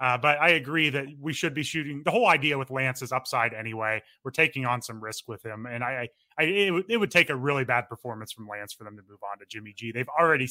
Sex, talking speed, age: male, 280 wpm, 30-49